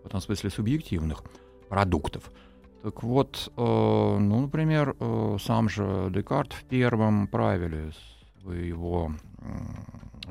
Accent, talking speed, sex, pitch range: native, 110 wpm, male, 90-110 Hz